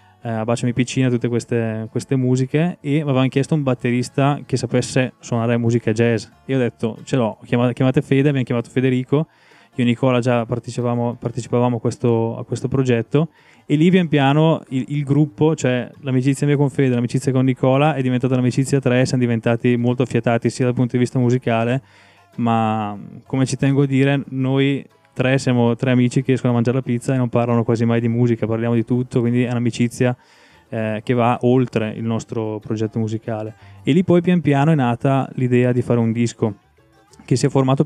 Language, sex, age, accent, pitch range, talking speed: Italian, male, 20-39, native, 120-130 Hz, 195 wpm